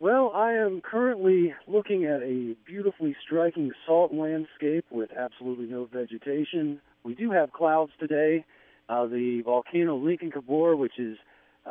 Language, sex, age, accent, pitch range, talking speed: English, male, 40-59, American, 115-145 Hz, 140 wpm